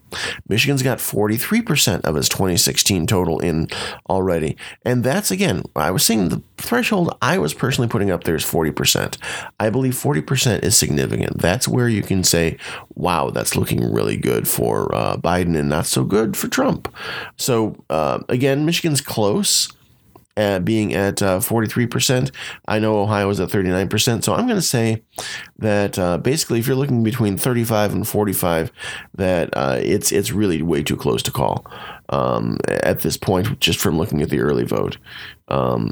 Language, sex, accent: English, male, American